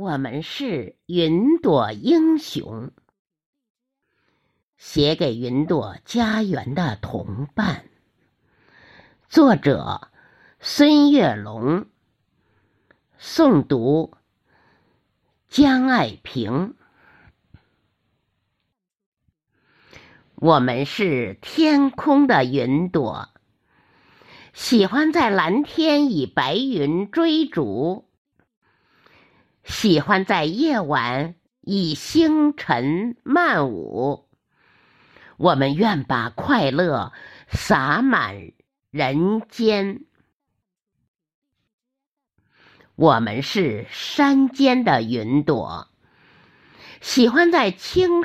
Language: Chinese